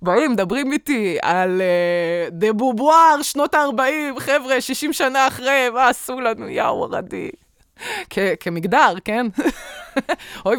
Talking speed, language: 125 wpm, Hebrew